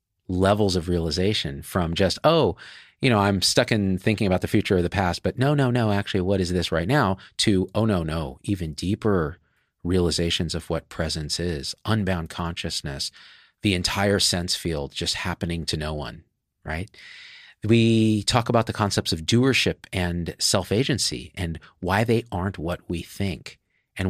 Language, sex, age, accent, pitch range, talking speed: English, male, 40-59, American, 85-105 Hz, 170 wpm